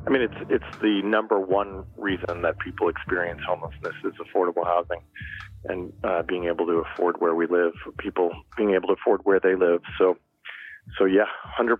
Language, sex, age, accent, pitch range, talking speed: English, male, 30-49, American, 95-110 Hz, 185 wpm